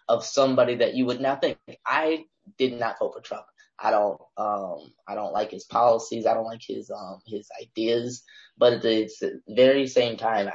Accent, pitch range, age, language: American, 115-155 Hz, 20-39, English